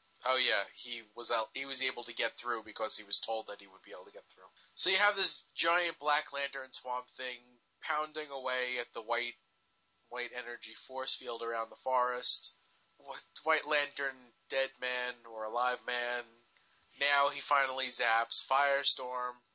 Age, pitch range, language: 20-39, 115-140 Hz, English